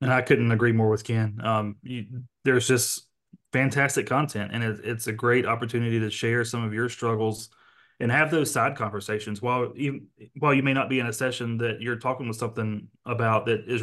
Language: English